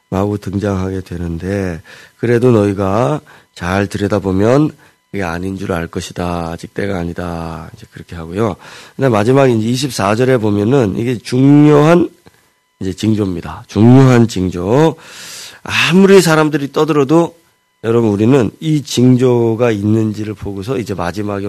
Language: Korean